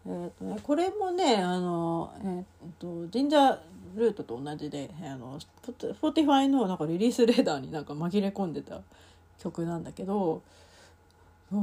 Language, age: Japanese, 40-59